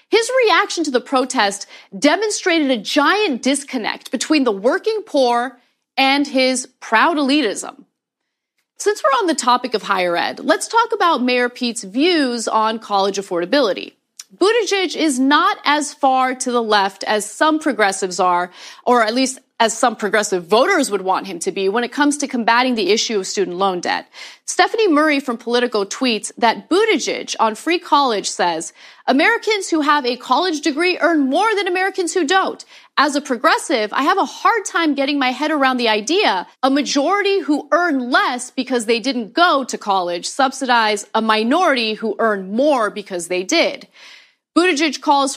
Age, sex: 30-49, female